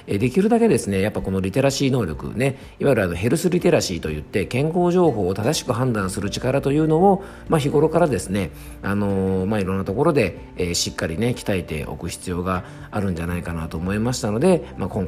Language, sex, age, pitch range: Japanese, male, 40-59, 90-135 Hz